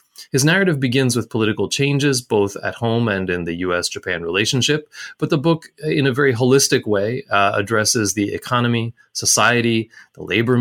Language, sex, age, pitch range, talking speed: English, male, 30-49, 100-135 Hz, 165 wpm